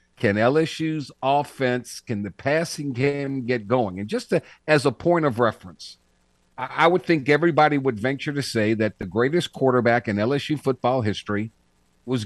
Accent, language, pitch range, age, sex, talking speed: American, English, 105-150 Hz, 50-69, male, 170 wpm